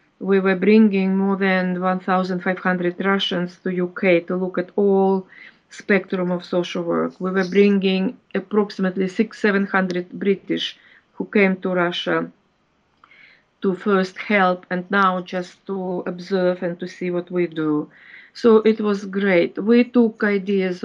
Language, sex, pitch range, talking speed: English, female, 175-195 Hz, 140 wpm